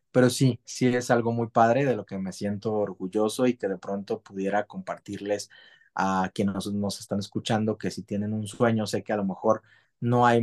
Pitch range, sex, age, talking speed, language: 105-120 Hz, male, 30-49, 205 wpm, Spanish